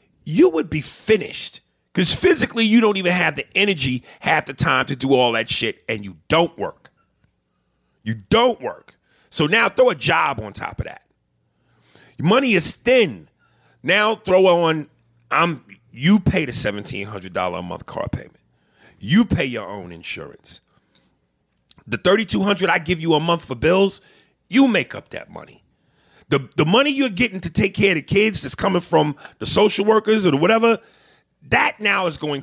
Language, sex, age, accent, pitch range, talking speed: English, male, 40-59, American, 125-200 Hz, 175 wpm